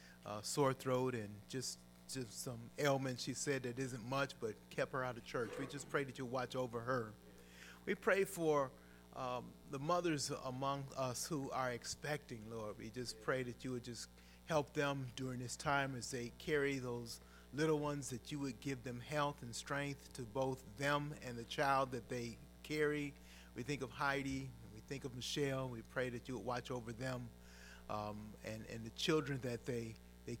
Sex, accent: male, American